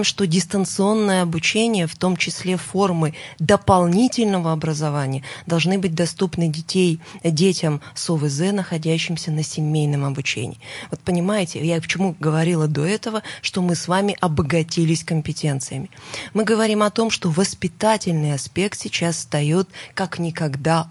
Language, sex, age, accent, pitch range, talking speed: Russian, female, 20-39, native, 160-195 Hz, 125 wpm